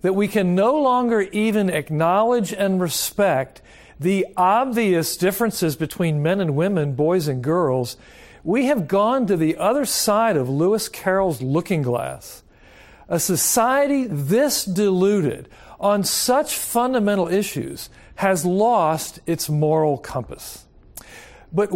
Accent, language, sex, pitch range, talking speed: American, English, male, 175-230 Hz, 125 wpm